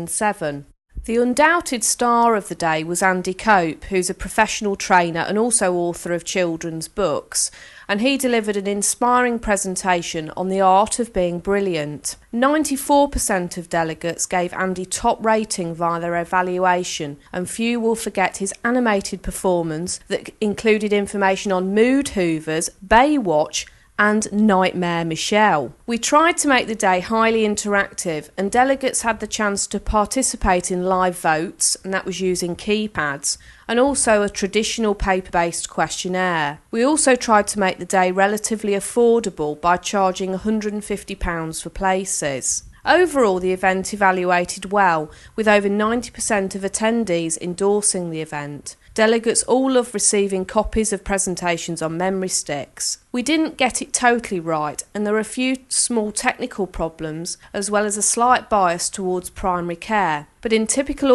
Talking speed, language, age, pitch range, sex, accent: 150 wpm, English, 40-59, 175-220 Hz, female, British